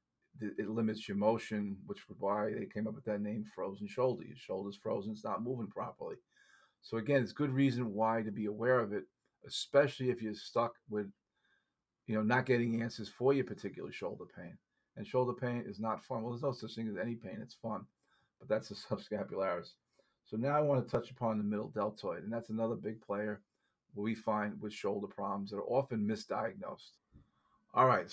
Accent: American